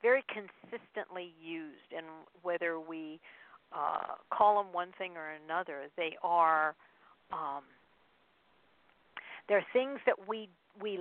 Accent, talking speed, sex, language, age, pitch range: American, 110 wpm, female, English, 50-69, 160-190 Hz